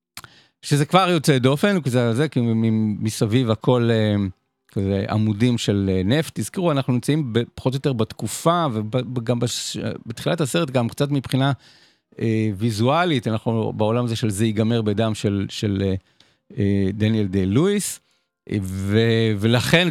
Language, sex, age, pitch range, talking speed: Hebrew, male, 50-69, 105-140 Hz, 135 wpm